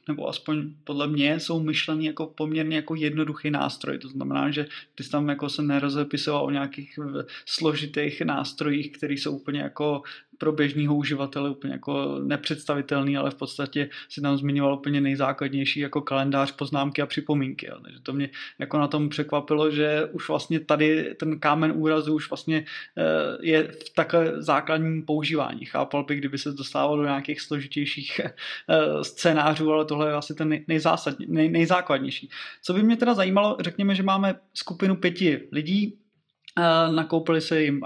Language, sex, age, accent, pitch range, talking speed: Czech, male, 20-39, native, 145-160 Hz, 155 wpm